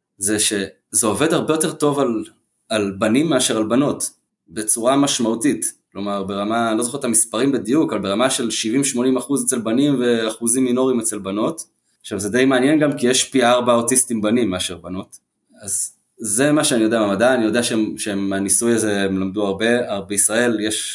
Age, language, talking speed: 20-39, Hebrew, 180 wpm